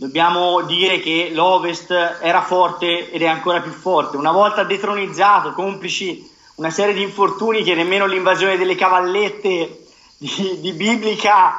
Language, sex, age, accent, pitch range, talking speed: Italian, male, 30-49, native, 160-195 Hz, 140 wpm